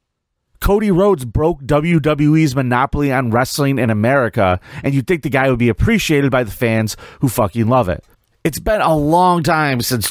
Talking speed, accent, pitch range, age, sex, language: 180 wpm, American, 115-155 Hz, 30-49, male, English